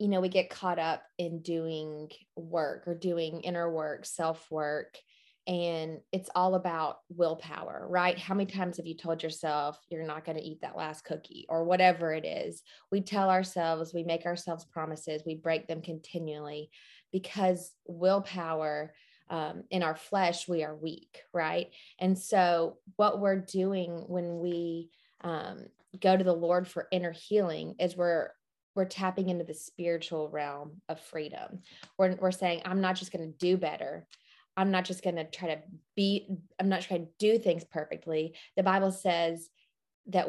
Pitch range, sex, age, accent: 165-185 Hz, female, 20-39, American